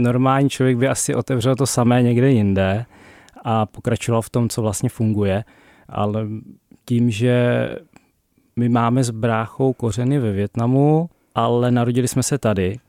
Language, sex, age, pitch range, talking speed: Czech, male, 20-39, 110-125 Hz, 145 wpm